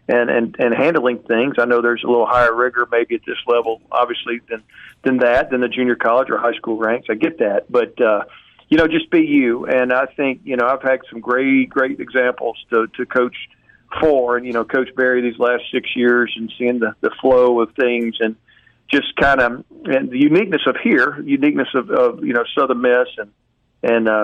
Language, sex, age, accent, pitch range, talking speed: English, male, 40-59, American, 120-135 Hz, 215 wpm